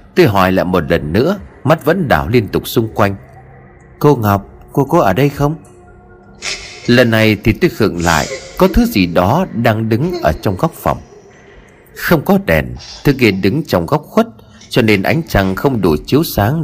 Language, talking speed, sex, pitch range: Vietnamese, 190 wpm, male, 95-150 Hz